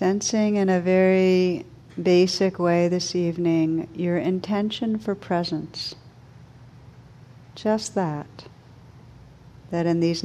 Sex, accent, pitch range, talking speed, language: female, American, 130-180 Hz, 100 wpm, English